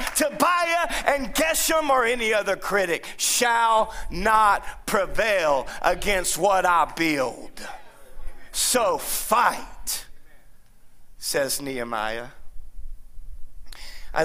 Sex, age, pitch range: male, 30-49, 115-190 Hz